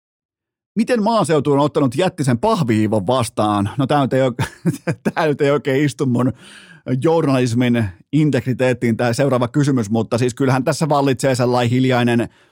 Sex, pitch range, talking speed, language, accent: male, 115-140 Hz, 135 wpm, Finnish, native